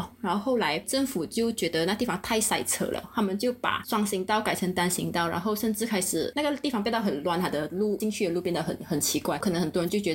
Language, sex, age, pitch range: Chinese, female, 20-39, 180-225 Hz